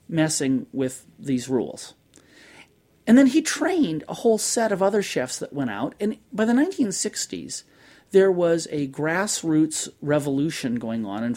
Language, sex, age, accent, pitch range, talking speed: English, male, 40-59, American, 150-225 Hz, 155 wpm